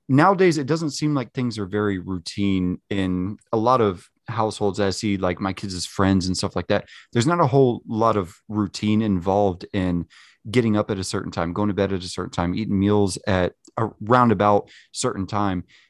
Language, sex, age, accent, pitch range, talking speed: English, male, 30-49, American, 95-120 Hz, 205 wpm